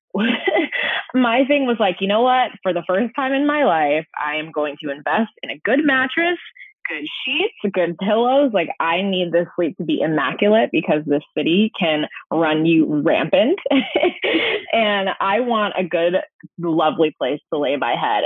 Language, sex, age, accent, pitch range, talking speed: English, female, 20-39, American, 160-225 Hz, 175 wpm